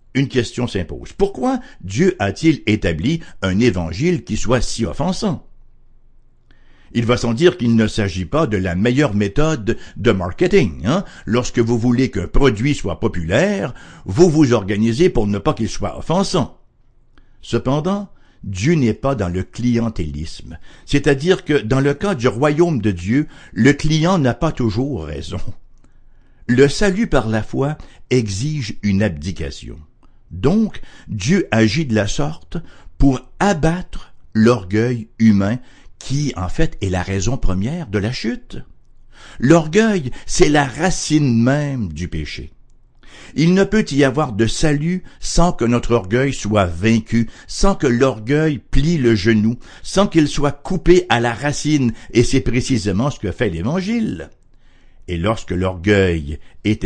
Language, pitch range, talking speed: English, 105-155 Hz, 145 wpm